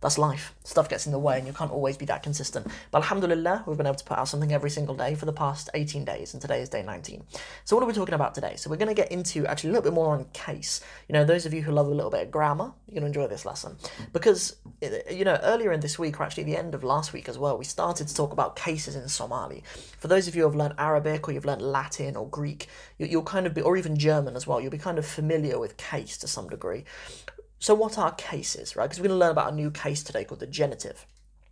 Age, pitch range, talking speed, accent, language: 20-39, 145-185 Hz, 280 wpm, British, English